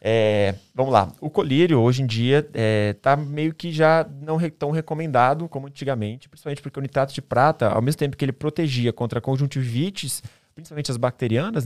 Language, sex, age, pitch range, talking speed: Portuguese, male, 20-39, 120-160 Hz, 185 wpm